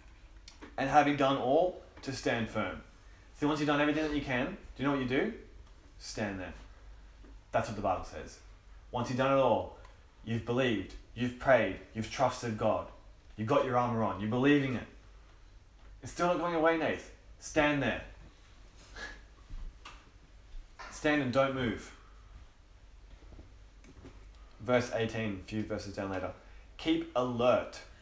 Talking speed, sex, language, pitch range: 150 wpm, male, English, 95-125 Hz